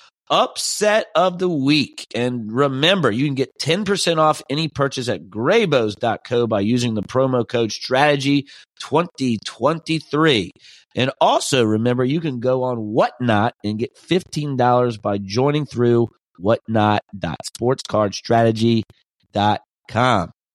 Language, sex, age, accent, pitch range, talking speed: English, male, 30-49, American, 110-135 Hz, 105 wpm